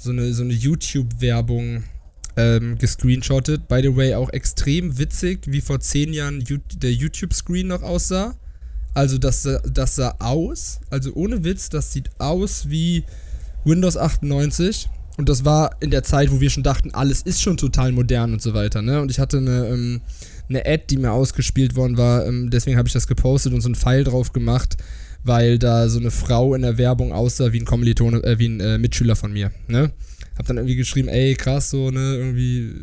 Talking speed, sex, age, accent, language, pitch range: 195 wpm, male, 20-39, German, German, 115-135 Hz